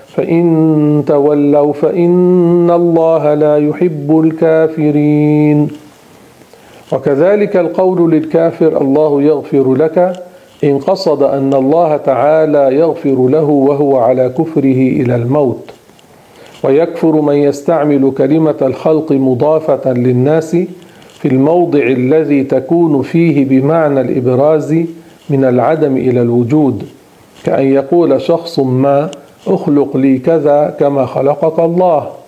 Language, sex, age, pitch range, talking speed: Arabic, male, 50-69, 135-165 Hz, 100 wpm